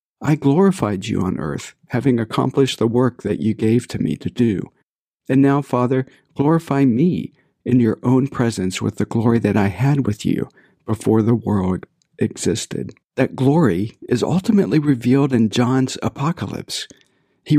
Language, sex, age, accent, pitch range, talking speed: English, male, 60-79, American, 115-145 Hz, 155 wpm